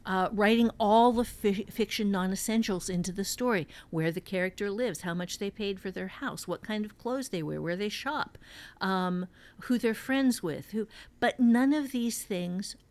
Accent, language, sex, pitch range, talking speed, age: American, English, female, 175-220 Hz, 190 wpm, 50-69